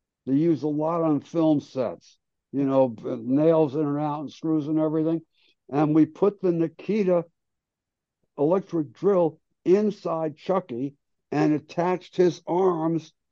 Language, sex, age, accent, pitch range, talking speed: English, male, 60-79, American, 150-180 Hz, 135 wpm